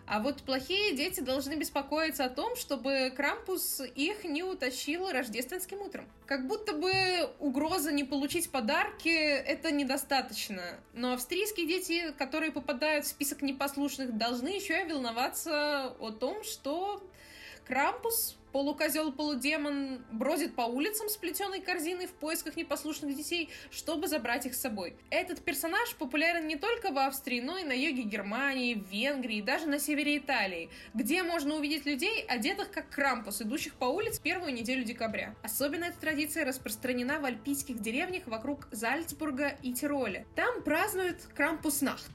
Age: 20-39